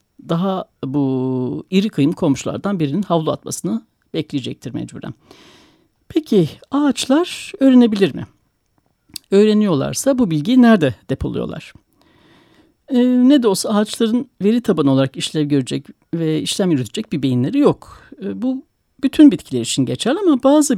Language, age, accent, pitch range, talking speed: Turkish, 60-79, native, 165-280 Hz, 125 wpm